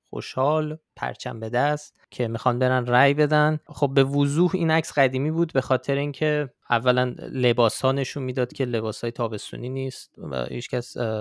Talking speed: 160 wpm